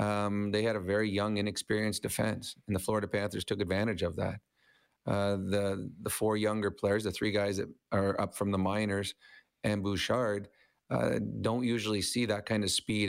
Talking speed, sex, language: 190 wpm, male, English